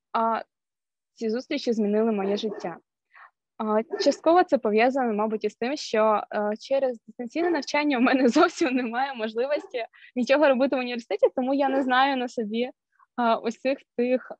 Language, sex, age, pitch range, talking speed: Ukrainian, female, 20-39, 215-275 Hz, 150 wpm